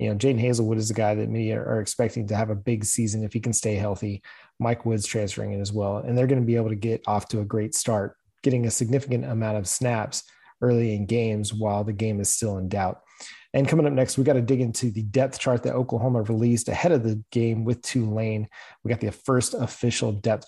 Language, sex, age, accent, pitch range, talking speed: English, male, 30-49, American, 110-130 Hz, 245 wpm